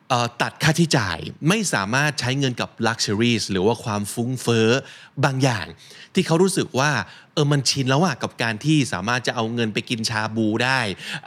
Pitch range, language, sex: 110-155 Hz, Thai, male